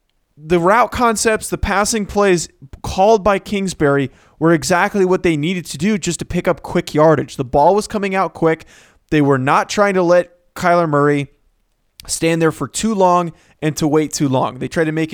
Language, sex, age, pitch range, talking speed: English, male, 20-39, 150-195 Hz, 200 wpm